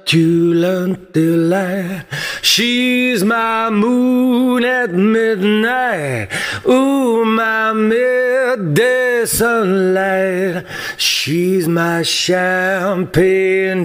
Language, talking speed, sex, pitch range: English, 50 wpm, male, 165-215 Hz